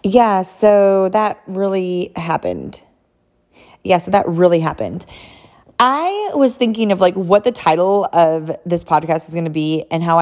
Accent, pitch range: American, 160-190 Hz